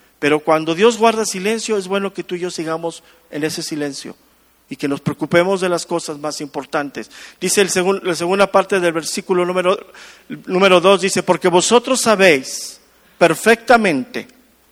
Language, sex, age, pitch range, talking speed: English, male, 50-69, 165-210 Hz, 165 wpm